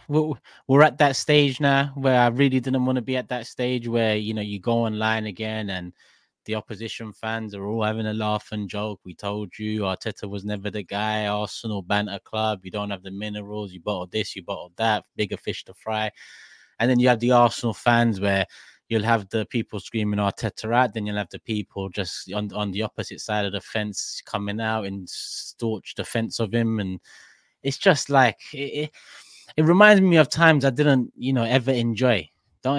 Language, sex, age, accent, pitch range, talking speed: English, male, 20-39, British, 105-125 Hz, 205 wpm